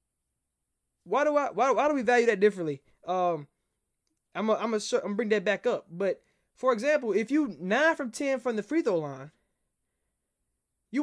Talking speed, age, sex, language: 185 wpm, 20-39, male, English